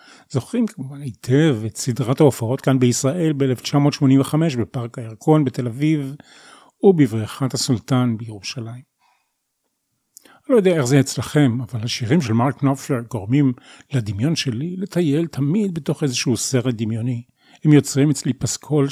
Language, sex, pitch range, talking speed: Hebrew, male, 125-155 Hz, 125 wpm